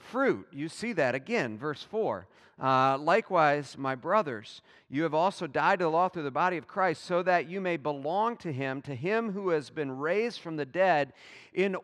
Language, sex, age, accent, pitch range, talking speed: English, male, 40-59, American, 145-200 Hz, 205 wpm